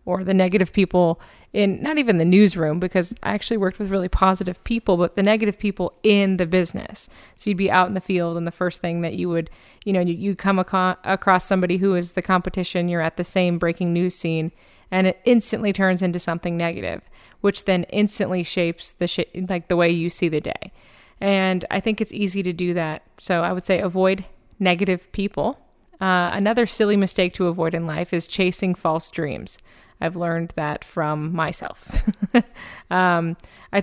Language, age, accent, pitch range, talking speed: English, 30-49, American, 170-195 Hz, 195 wpm